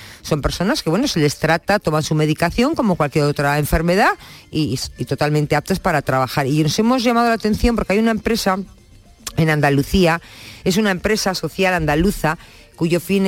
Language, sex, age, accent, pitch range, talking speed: Spanish, female, 50-69, Spanish, 155-210 Hz, 170 wpm